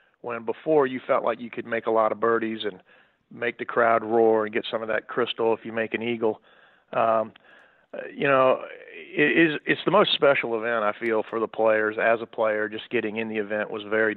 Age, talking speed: 40-59, 215 wpm